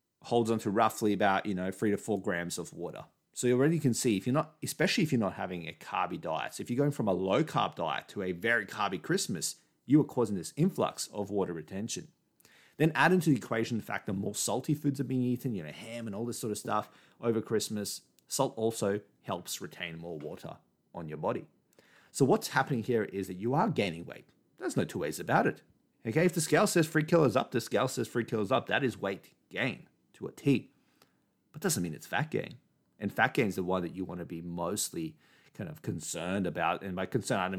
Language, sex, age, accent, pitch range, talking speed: English, male, 30-49, Australian, 95-130 Hz, 235 wpm